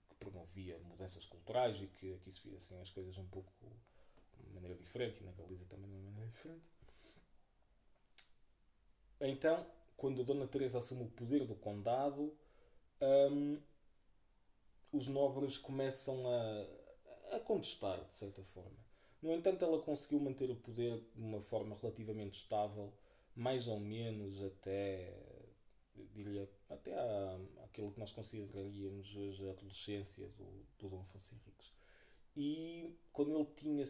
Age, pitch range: 20-39, 95-130 Hz